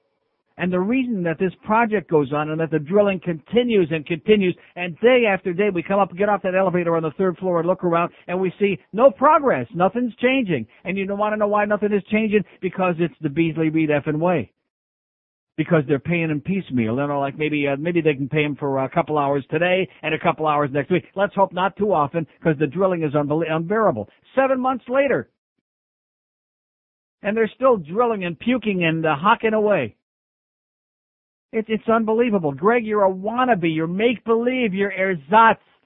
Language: English